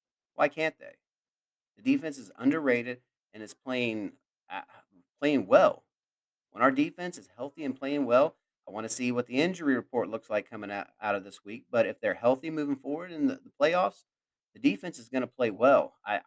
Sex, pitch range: male, 125-160 Hz